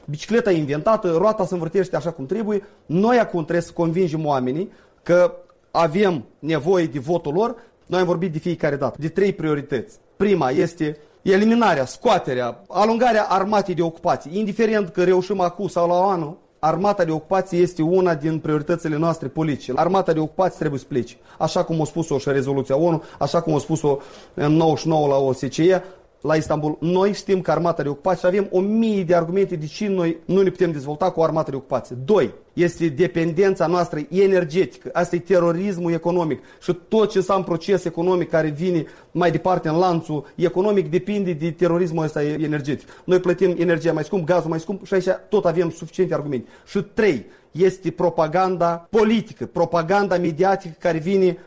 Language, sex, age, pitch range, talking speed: Romanian, male, 30-49, 160-190 Hz, 175 wpm